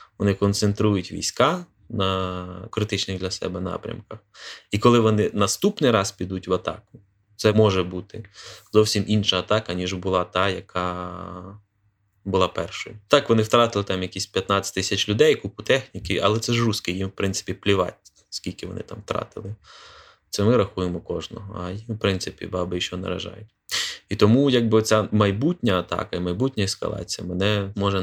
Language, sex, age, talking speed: Ukrainian, male, 20-39, 155 wpm